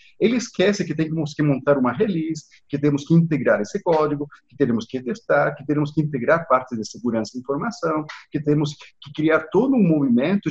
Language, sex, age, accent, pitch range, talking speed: Portuguese, male, 50-69, Brazilian, 135-195 Hz, 195 wpm